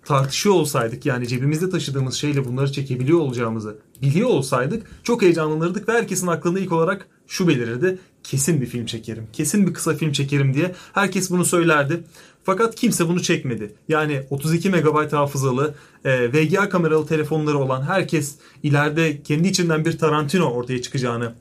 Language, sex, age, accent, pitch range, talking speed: Turkish, male, 30-49, native, 130-180 Hz, 150 wpm